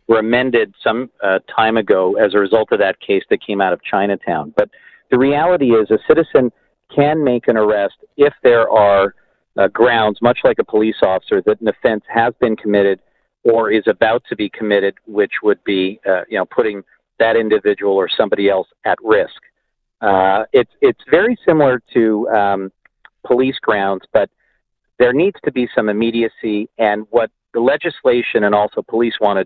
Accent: American